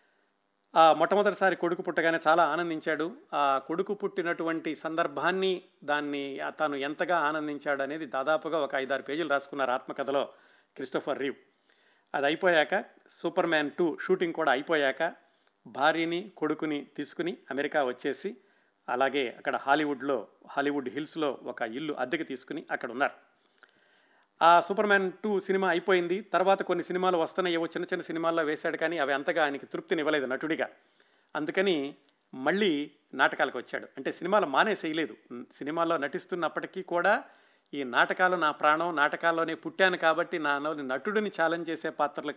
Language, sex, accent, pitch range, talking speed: Telugu, male, native, 145-175 Hz, 125 wpm